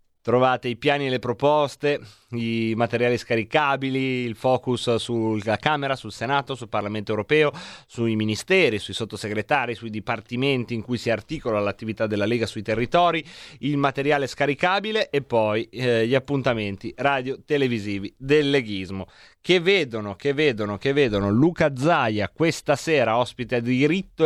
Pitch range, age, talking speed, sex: 115-145 Hz, 30-49, 140 wpm, male